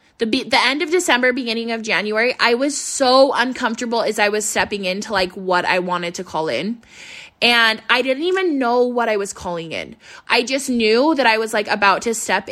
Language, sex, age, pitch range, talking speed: English, female, 20-39, 205-280 Hz, 215 wpm